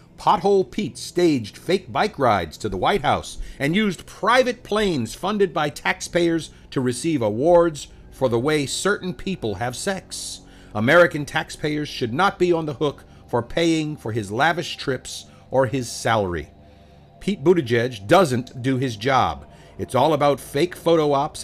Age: 50-69